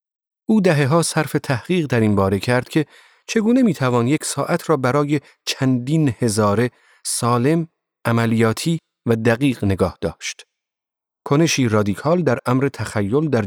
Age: 40-59